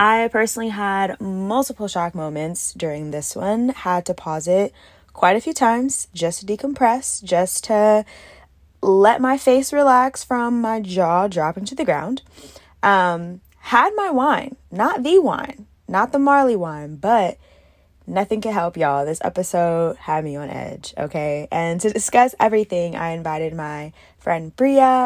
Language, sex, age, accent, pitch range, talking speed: English, female, 20-39, American, 175-235 Hz, 155 wpm